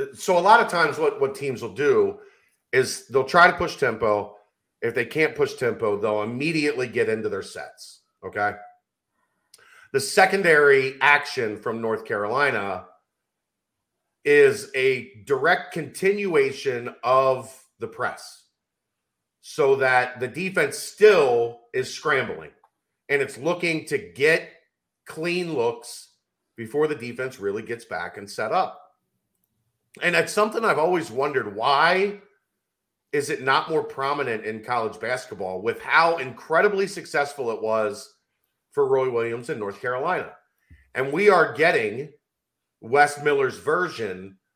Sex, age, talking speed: male, 40-59, 130 wpm